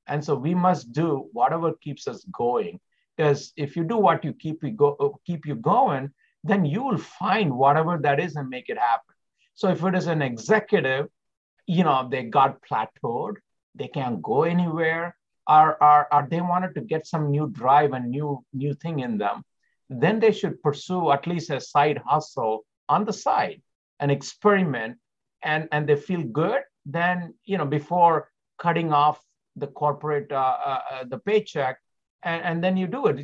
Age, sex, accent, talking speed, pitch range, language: 50-69, male, Indian, 180 wpm, 145-180 Hz, English